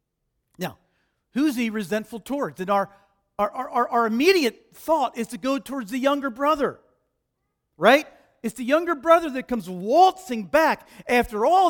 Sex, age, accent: male, 50-69, American